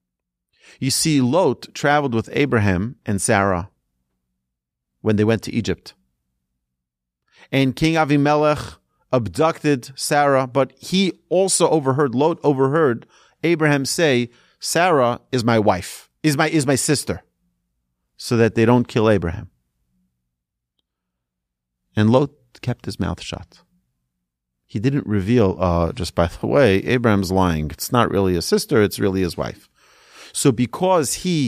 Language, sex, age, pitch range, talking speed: English, male, 40-59, 85-140 Hz, 130 wpm